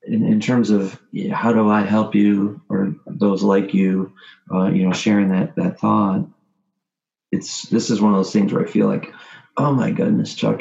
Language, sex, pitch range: English, male, 90-105 Hz